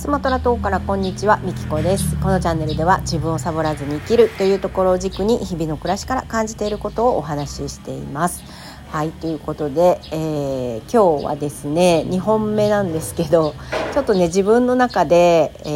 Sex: female